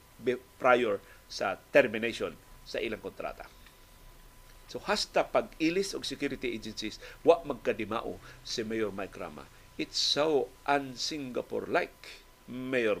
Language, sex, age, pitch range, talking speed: Filipino, male, 50-69, 115-165 Hz, 105 wpm